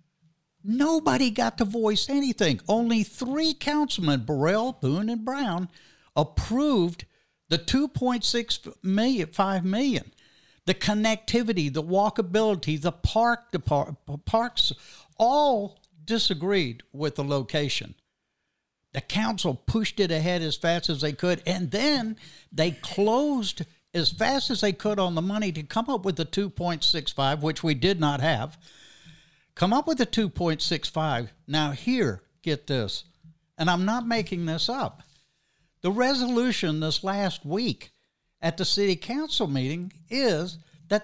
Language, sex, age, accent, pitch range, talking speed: English, male, 60-79, American, 155-220 Hz, 135 wpm